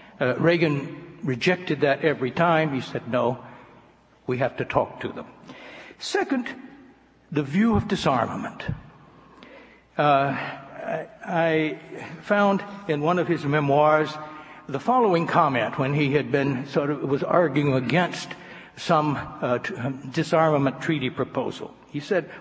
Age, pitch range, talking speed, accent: 60-79, 135-170 Hz, 125 wpm, American